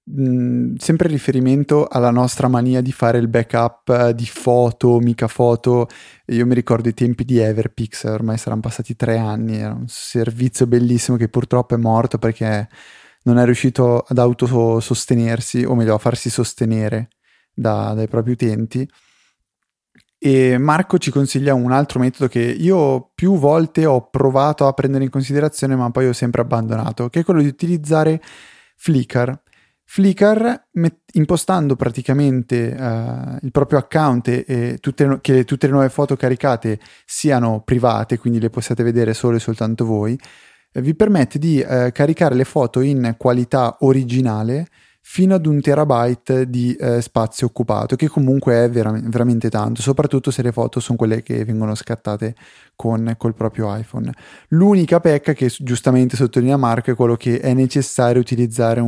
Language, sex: Italian, male